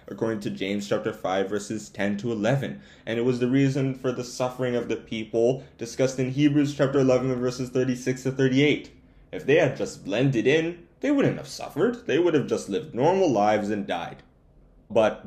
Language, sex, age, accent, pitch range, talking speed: English, male, 20-39, American, 110-150 Hz, 195 wpm